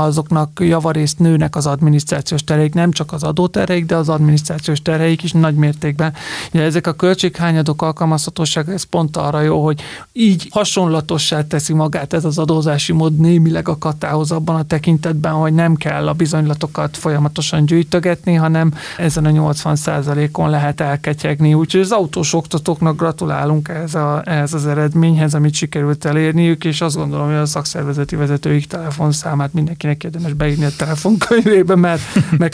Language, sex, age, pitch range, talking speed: Hungarian, male, 30-49, 155-175 Hz, 150 wpm